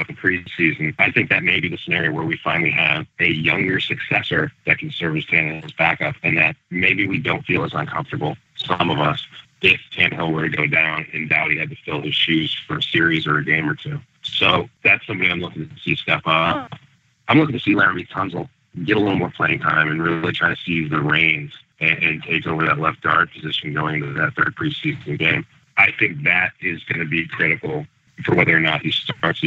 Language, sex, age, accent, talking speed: English, male, 40-59, American, 225 wpm